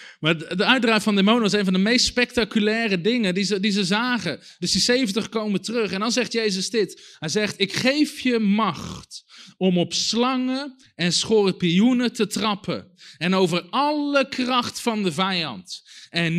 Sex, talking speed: male, 170 wpm